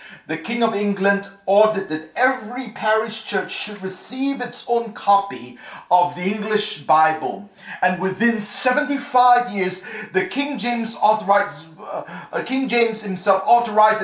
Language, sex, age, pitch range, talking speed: English, male, 40-59, 170-220 Hz, 135 wpm